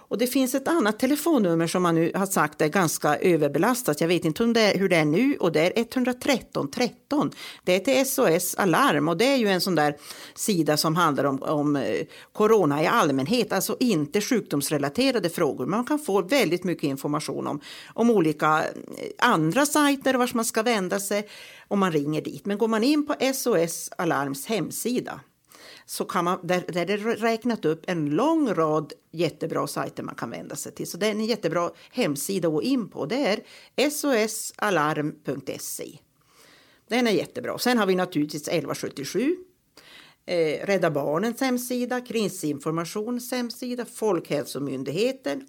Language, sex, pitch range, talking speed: Swedish, female, 160-245 Hz, 165 wpm